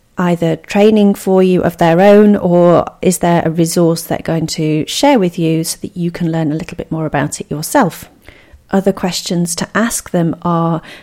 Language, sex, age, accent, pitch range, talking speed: English, female, 40-59, British, 165-200 Hz, 195 wpm